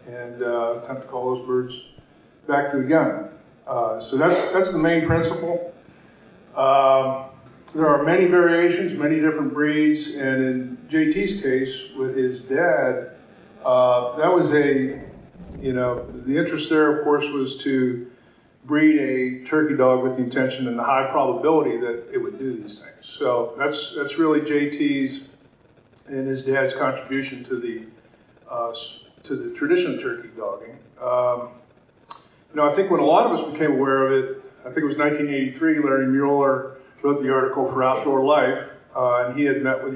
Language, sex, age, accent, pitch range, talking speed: English, male, 50-69, American, 130-150 Hz, 170 wpm